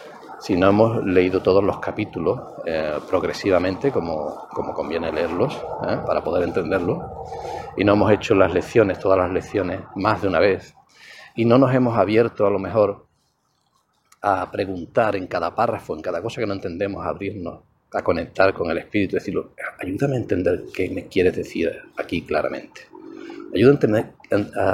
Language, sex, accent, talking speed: English, male, Spanish, 165 wpm